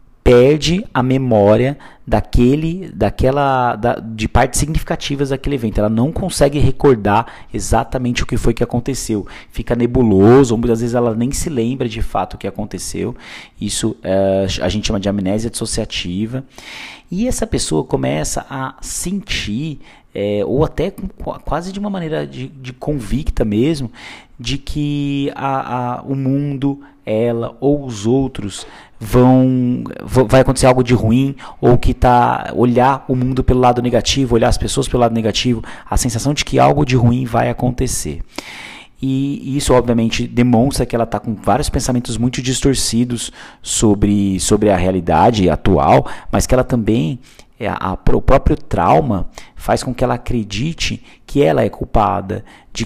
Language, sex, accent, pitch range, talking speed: Portuguese, male, Brazilian, 105-130 Hz, 145 wpm